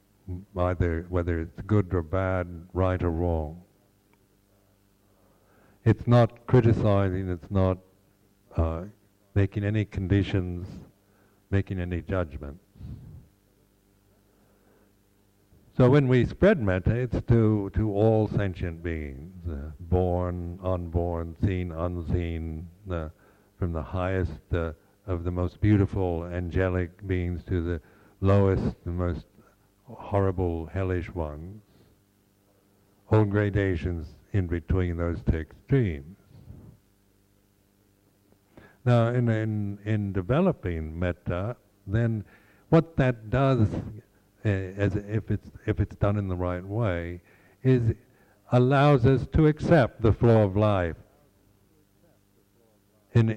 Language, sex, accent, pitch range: English, male, American, 90-105 Hz